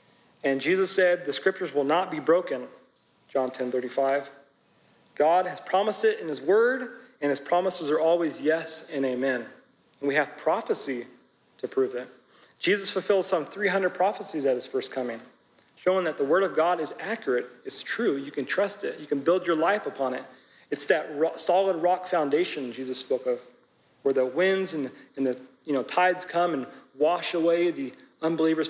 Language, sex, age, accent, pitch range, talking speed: English, male, 40-59, American, 140-190 Hz, 180 wpm